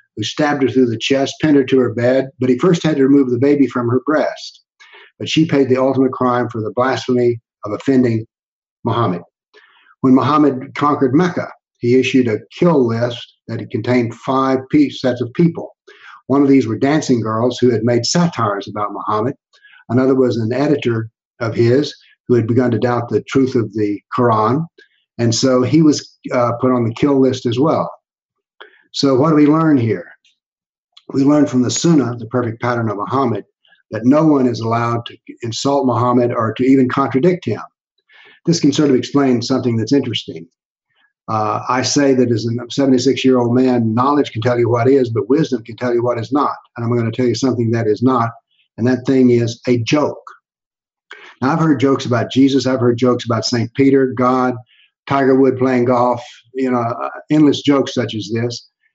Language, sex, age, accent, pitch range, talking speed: English, male, 60-79, American, 120-140 Hz, 190 wpm